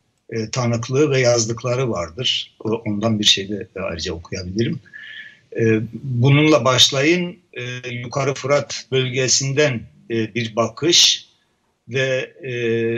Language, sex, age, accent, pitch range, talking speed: Turkish, male, 60-79, native, 115-140 Hz, 110 wpm